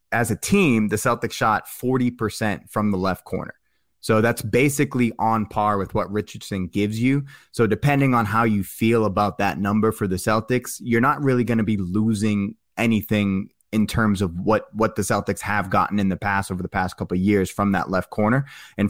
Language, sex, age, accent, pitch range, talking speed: English, male, 20-39, American, 100-115 Hz, 205 wpm